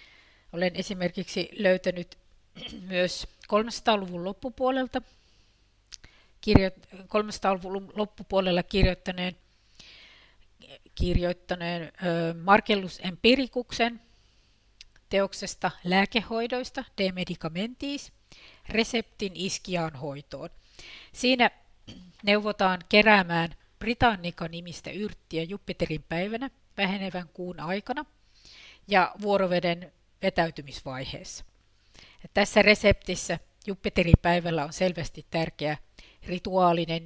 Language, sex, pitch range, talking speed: Finnish, female, 145-195 Hz, 65 wpm